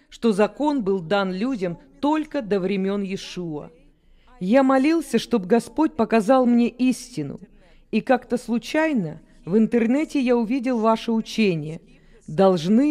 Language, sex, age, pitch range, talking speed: Russian, female, 40-59, 200-265 Hz, 120 wpm